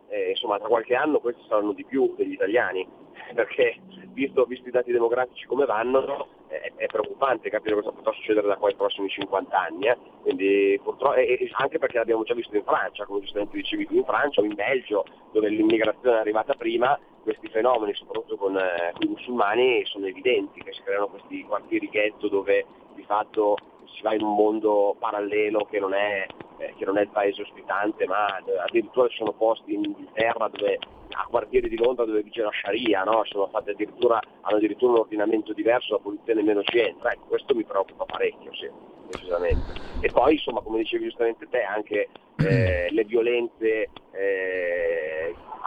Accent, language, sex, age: native, Italian, male, 30-49